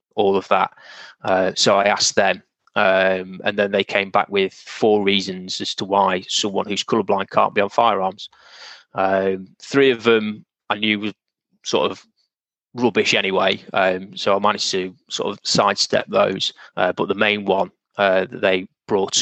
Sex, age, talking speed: male, 20-39, 175 wpm